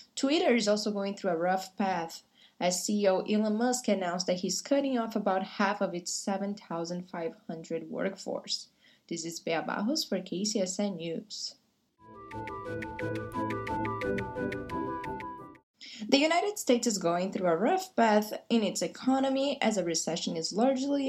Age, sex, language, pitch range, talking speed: 20-39, female, English, 180-240 Hz, 135 wpm